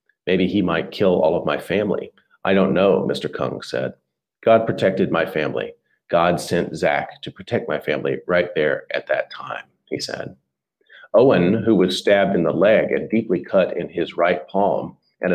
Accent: American